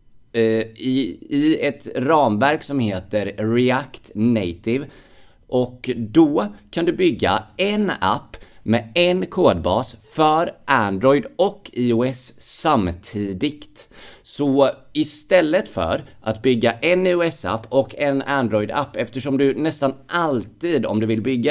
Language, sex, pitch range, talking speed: Swedish, male, 105-140 Hz, 115 wpm